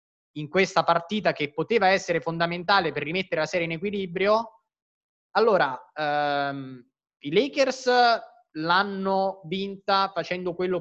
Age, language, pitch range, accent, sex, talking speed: 20-39, Italian, 155-205 Hz, native, male, 115 wpm